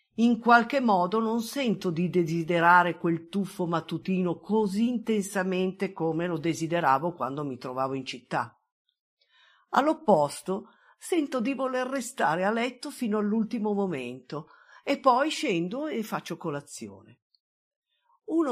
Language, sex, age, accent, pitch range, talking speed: Italian, female, 50-69, native, 160-235 Hz, 120 wpm